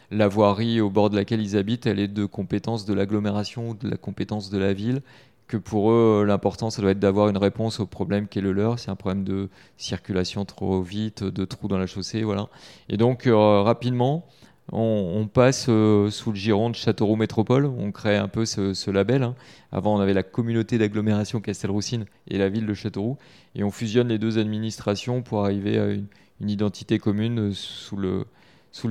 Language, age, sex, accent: French, 30-49, male, French